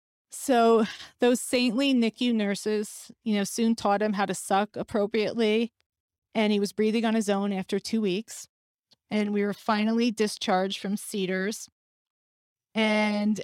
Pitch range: 195-225 Hz